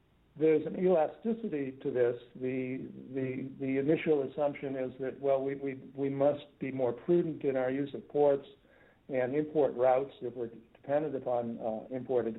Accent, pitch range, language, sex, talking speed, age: American, 125-150 Hz, English, male, 165 wpm, 60-79